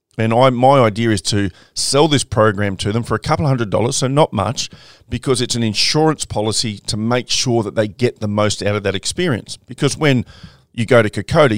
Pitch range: 105-120 Hz